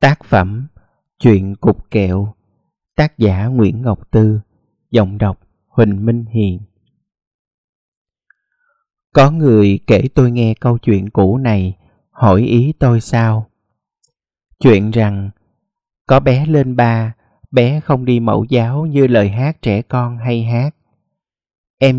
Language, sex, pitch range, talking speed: Vietnamese, male, 105-130 Hz, 130 wpm